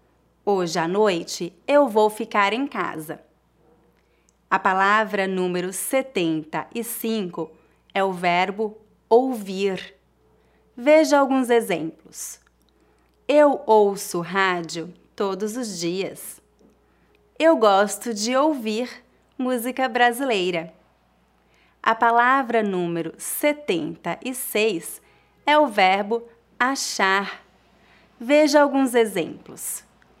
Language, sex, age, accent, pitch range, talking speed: Portuguese, female, 30-49, Brazilian, 185-255 Hz, 85 wpm